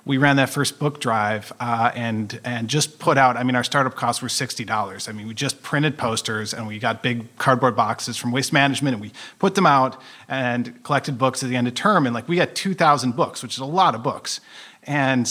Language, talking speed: English, 235 wpm